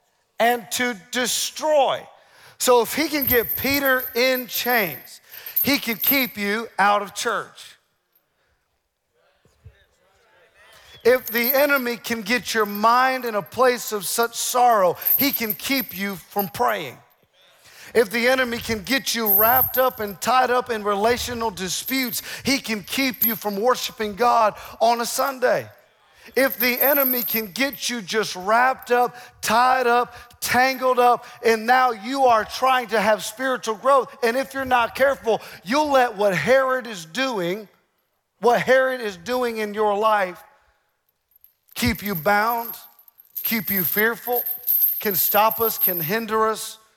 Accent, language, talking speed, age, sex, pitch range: American, English, 145 wpm, 40-59, male, 205-250 Hz